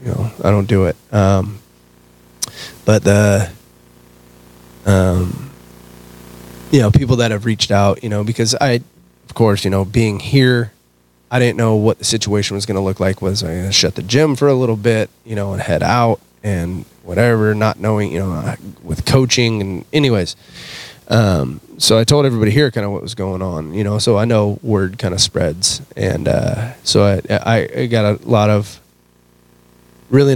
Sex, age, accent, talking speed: male, 20-39, American, 190 wpm